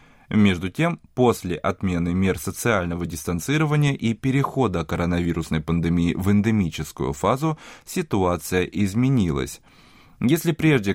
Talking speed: 100 wpm